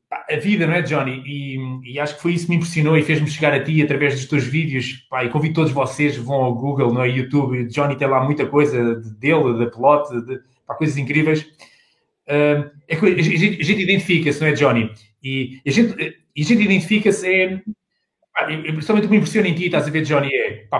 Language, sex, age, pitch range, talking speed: Portuguese, male, 20-39, 145-185 Hz, 220 wpm